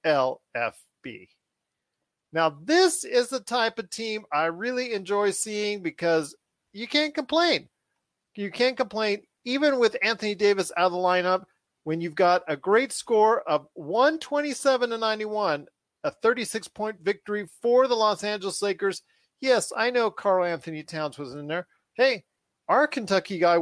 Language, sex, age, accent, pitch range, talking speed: English, male, 40-59, American, 170-220 Hz, 150 wpm